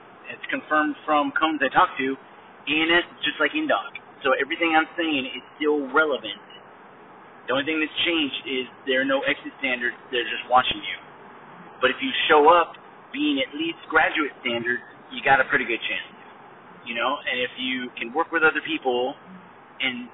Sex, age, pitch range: male, 30-49, 130-185 Hz